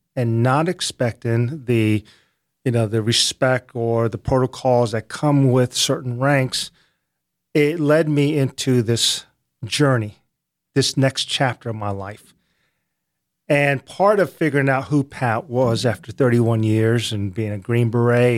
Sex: male